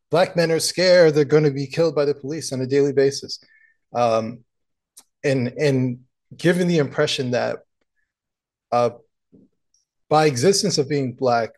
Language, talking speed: English, 150 wpm